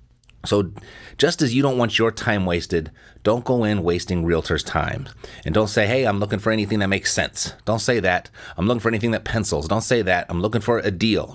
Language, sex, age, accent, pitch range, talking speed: English, male, 30-49, American, 95-120 Hz, 225 wpm